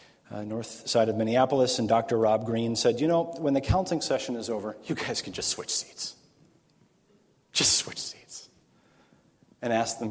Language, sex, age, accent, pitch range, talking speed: English, male, 30-49, American, 105-125 Hz, 180 wpm